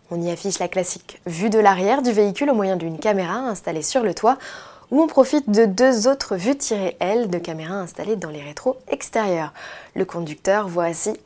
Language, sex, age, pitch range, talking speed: French, female, 20-39, 180-240 Hz, 205 wpm